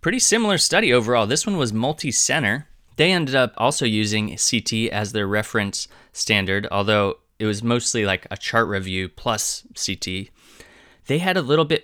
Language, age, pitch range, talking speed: English, 20-39, 105-130 Hz, 165 wpm